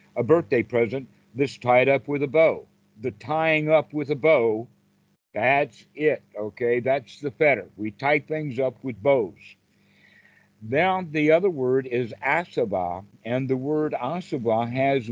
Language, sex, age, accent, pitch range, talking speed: English, male, 60-79, American, 120-155 Hz, 150 wpm